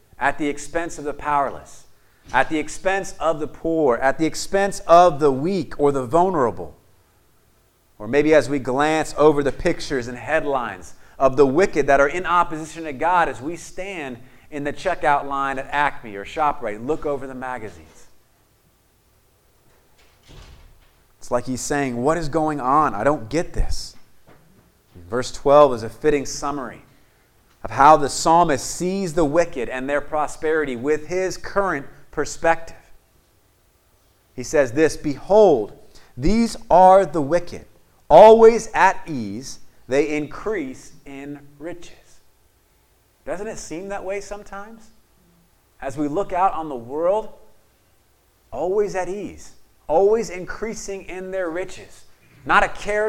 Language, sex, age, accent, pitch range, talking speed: English, male, 30-49, American, 130-175 Hz, 145 wpm